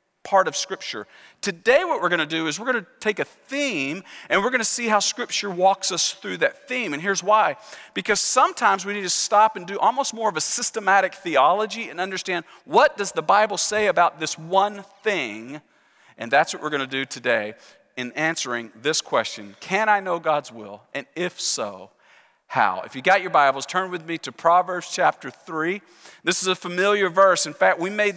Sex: male